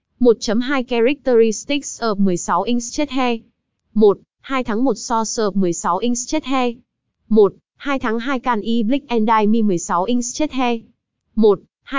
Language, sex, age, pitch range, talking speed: Vietnamese, female, 20-39, 215-255 Hz, 140 wpm